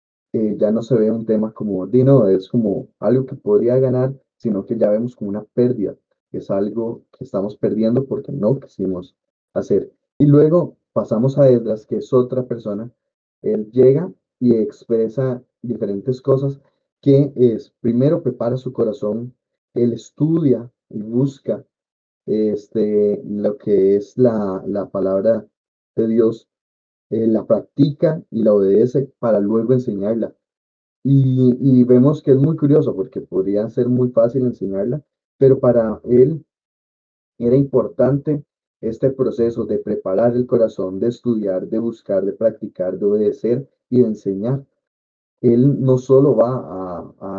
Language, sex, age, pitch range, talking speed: Spanish, male, 30-49, 105-130 Hz, 145 wpm